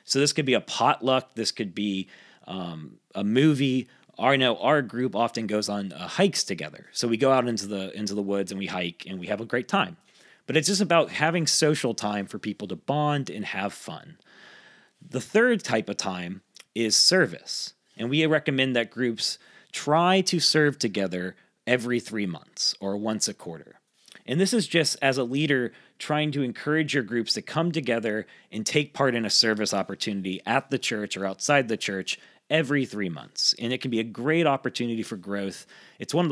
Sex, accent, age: male, American, 30-49